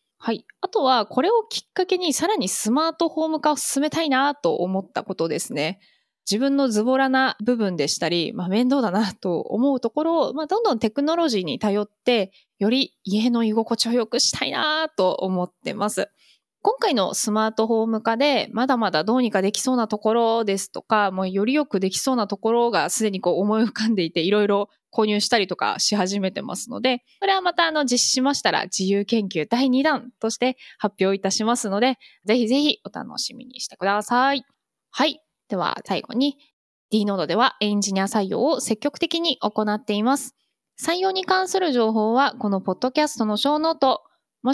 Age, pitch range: 20-39, 210-280 Hz